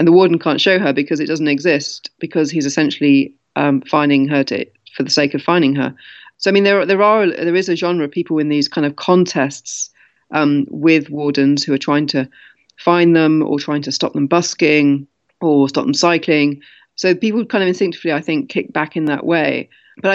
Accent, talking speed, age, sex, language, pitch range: British, 215 wpm, 30-49, female, English, 145-170 Hz